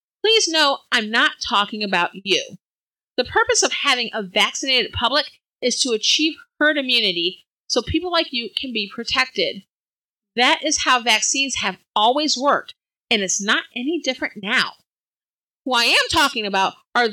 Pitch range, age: 215-315 Hz, 40-59